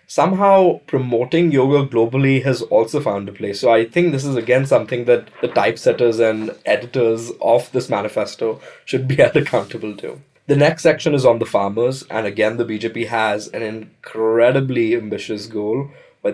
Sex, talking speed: male, 165 wpm